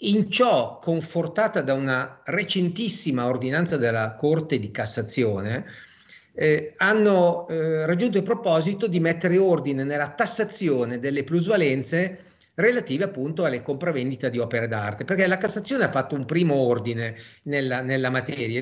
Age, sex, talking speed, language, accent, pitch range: 40-59, male, 135 wpm, Italian, native, 135-190 Hz